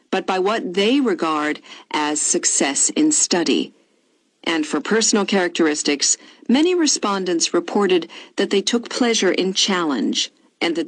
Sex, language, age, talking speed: female, Vietnamese, 50-69, 130 wpm